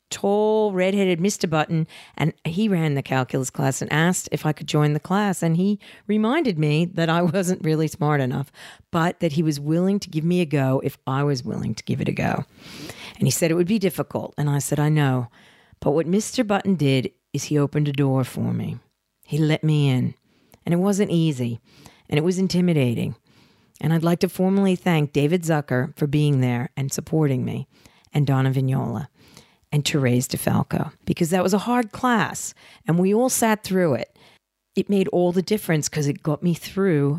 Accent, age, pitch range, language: American, 40-59, 145-190 Hz, English